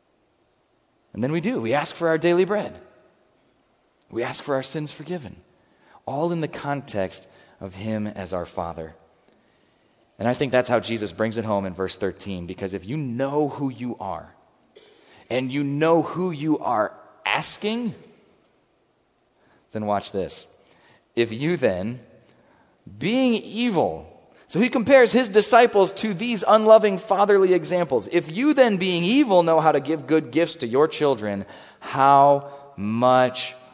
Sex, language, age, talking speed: male, English, 30-49, 150 wpm